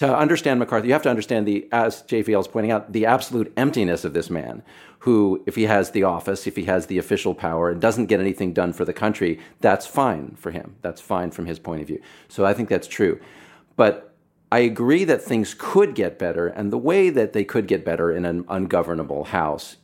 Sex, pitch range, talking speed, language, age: male, 90-120 Hz, 225 wpm, English, 40-59